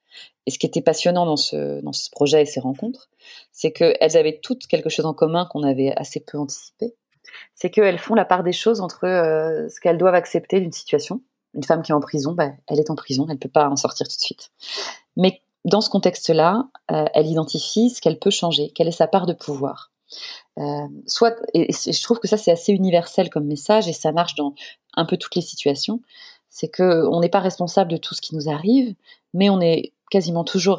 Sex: female